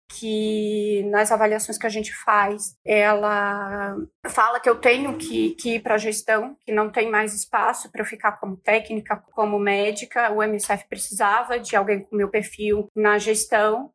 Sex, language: female, Portuguese